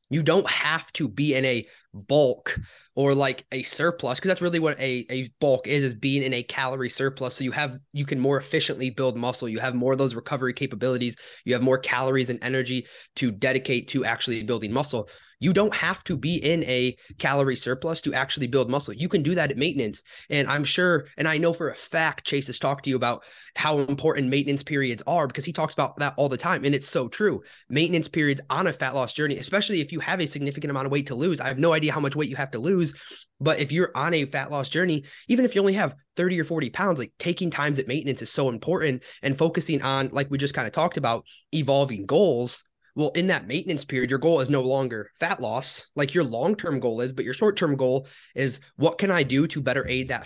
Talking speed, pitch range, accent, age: 240 wpm, 130-155 Hz, American, 20-39